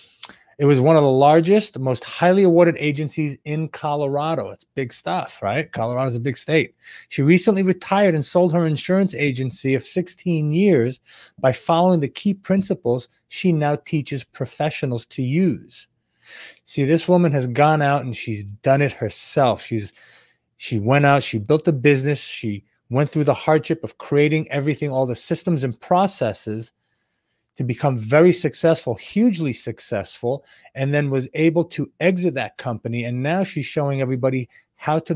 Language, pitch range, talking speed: English, 125-160 Hz, 160 wpm